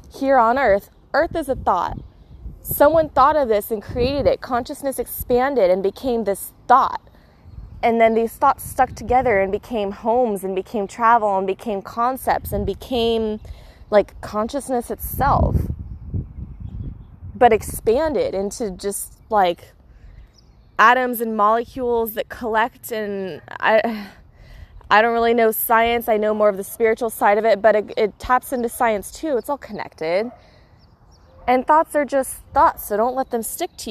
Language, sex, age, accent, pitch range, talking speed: English, female, 20-39, American, 205-250 Hz, 155 wpm